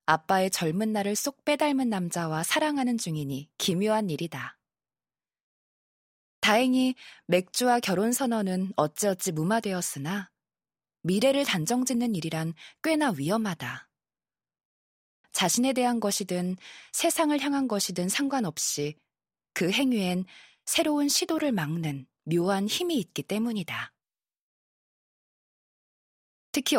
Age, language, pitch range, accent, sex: 20-39, Korean, 165-245 Hz, native, female